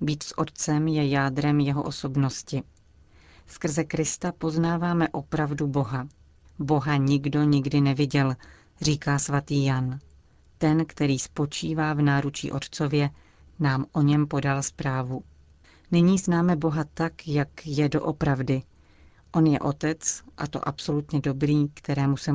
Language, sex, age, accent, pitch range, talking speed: Czech, female, 40-59, native, 135-155 Hz, 125 wpm